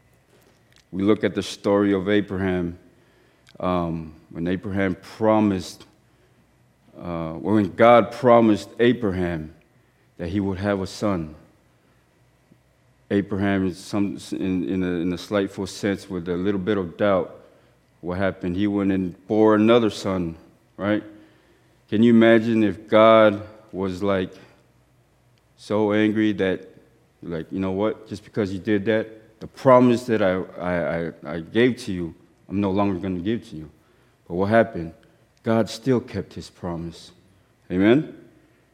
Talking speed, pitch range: 140 wpm, 90-110 Hz